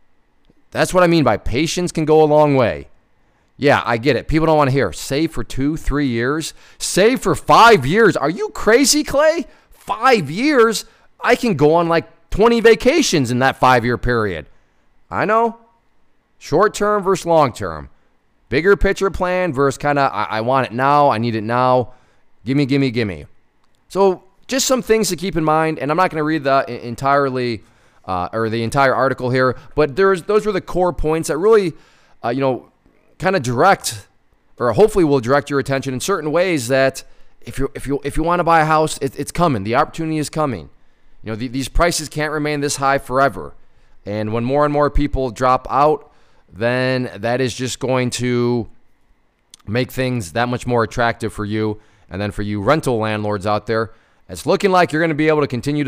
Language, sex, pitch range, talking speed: English, male, 120-165 Hz, 195 wpm